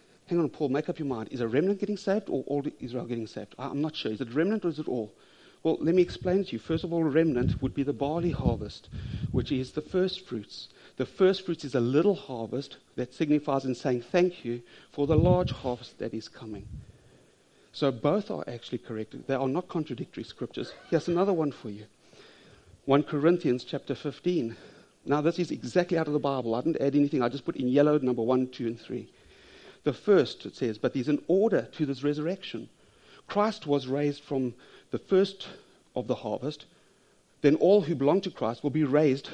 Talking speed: 210 wpm